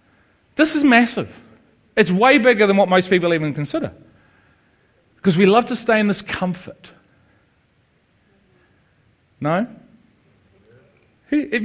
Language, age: English, 40-59